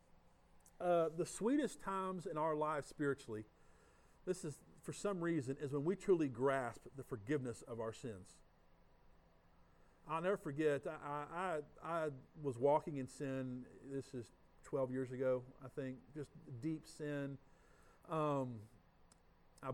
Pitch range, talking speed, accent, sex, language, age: 130-165 Hz, 135 wpm, American, male, English, 50-69